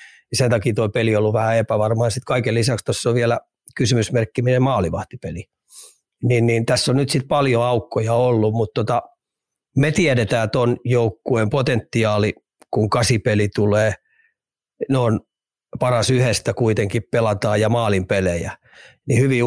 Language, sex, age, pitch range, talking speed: Finnish, male, 40-59, 110-125 Hz, 145 wpm